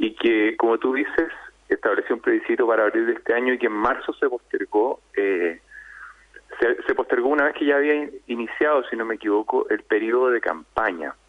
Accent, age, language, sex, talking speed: Argentinian, 30-49, Spanish, male, 200 wpm